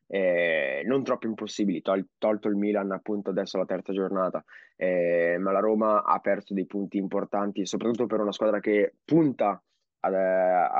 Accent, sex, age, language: native, male, 20-39, Italian